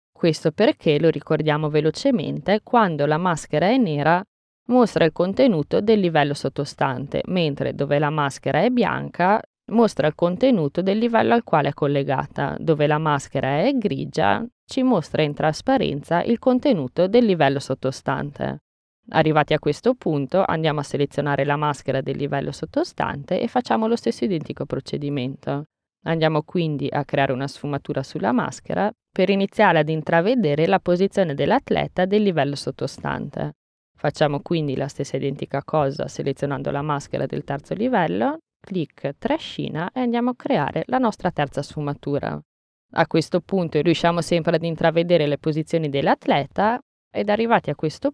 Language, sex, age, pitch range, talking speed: Italian, female, 20-39, 145-200 Hz, 145 wpm